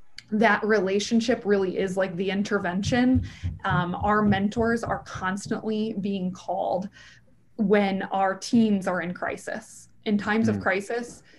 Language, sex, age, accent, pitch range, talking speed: English, female, 20-39, American, 185-210 Hz, 125 wpm